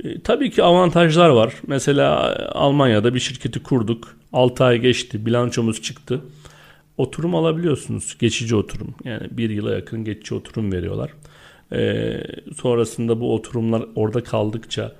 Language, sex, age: Turkish, male, 40-59